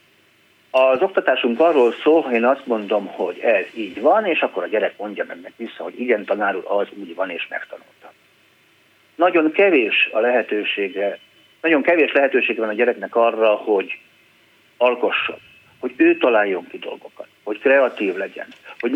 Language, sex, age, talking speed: Hungarian, male, 50-69, 155 wpm